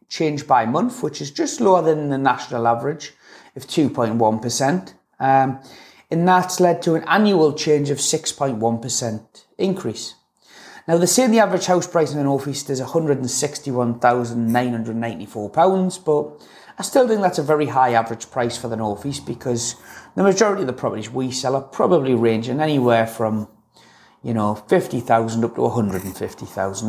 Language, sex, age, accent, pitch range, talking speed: English, male, 30-49, British, 115-150 Hz, 155 wpm